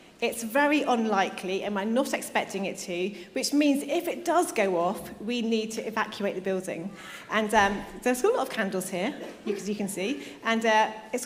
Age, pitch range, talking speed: 30-49, 195-245 Hz, 195 wpm